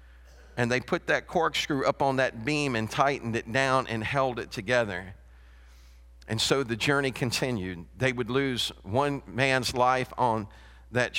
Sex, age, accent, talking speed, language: male, 50-69, American, 160 wpm, English